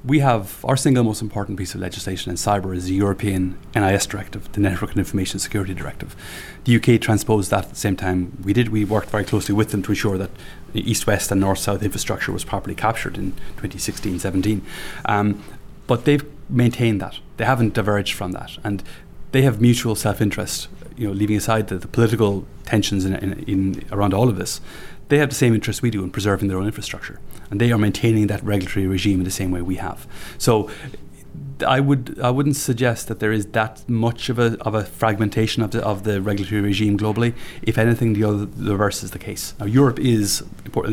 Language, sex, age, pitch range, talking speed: English, male, 30-49, 95-115 Hz, 210 wpm